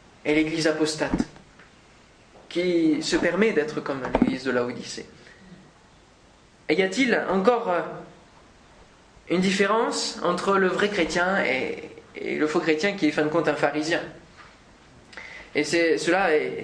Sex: male